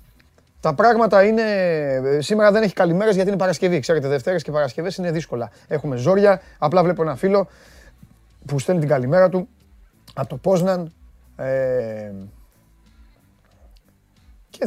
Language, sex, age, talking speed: Greek, male, 30-49, 125 wpm